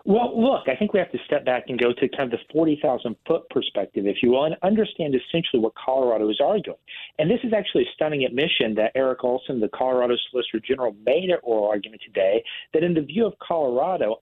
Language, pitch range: English, 125-185 Hz